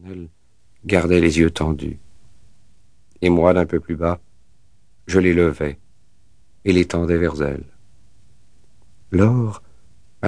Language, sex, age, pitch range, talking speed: French, male, 50-69, 85-100 Hz, 125 wpm